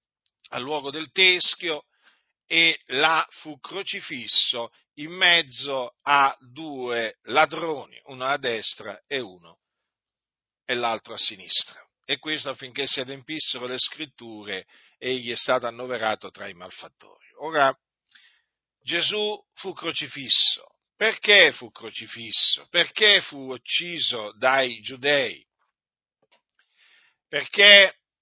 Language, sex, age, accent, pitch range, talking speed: Italian, male, 50-69, native, 130-180 Hz, 105 wpm